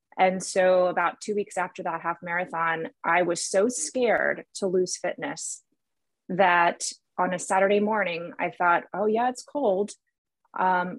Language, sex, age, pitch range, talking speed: English, female, 20-39, 175-200 Hz, 155 wpm